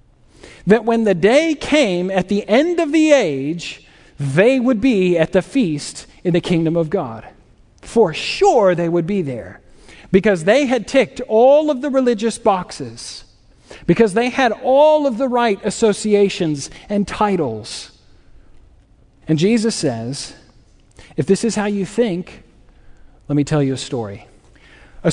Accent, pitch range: American, 165-220 Hz